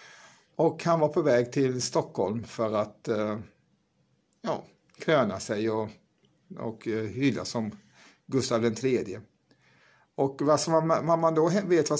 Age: 50-69